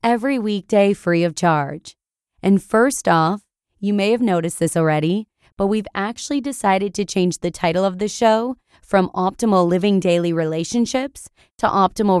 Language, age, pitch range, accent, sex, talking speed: English, 20-39, 175-220 Hz, American, female, 155 wpm